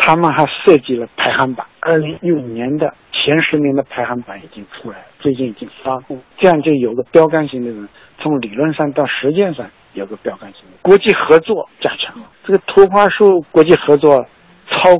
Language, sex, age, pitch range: Chinese, male, 60-79, 130-165 Hz